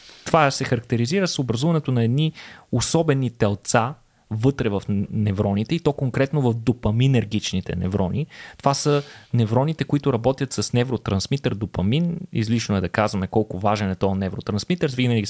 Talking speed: 140 wpm